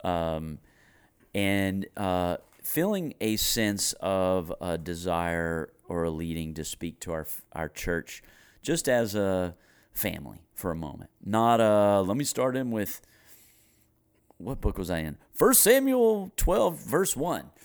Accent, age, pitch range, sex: American, 40-59, 85-110 Hz, male